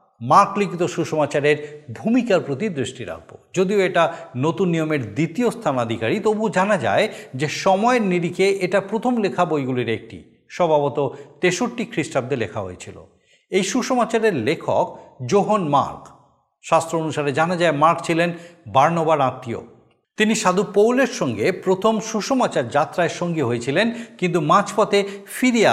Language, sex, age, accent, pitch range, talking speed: Bengali, male, 50-69, native, 140-195 Hz, 125 wpm